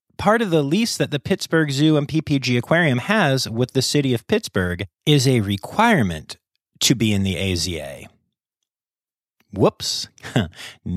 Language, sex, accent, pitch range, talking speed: English, male, American, 105-145 Hz, 140 wpm